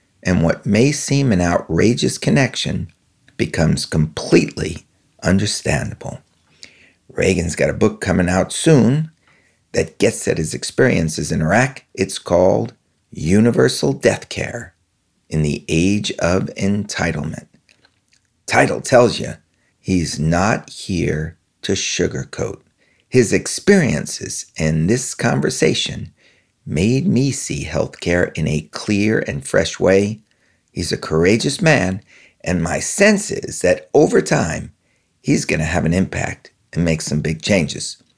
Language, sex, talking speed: English, male, 125 wpm